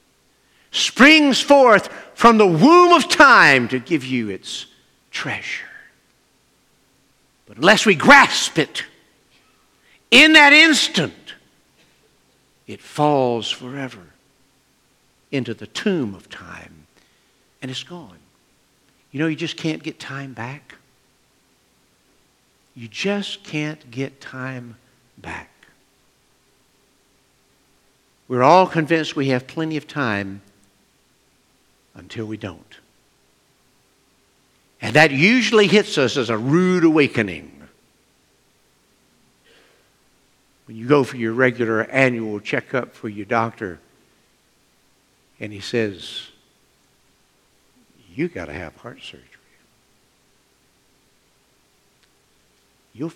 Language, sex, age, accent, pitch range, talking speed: English, male, 60-79, American, 110-160 Hz, 95 wpm